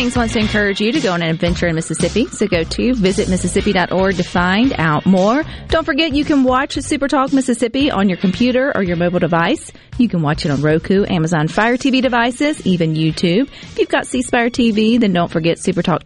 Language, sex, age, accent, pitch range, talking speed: English, female, 30-49, American, 150-220 Hz, 210 wpm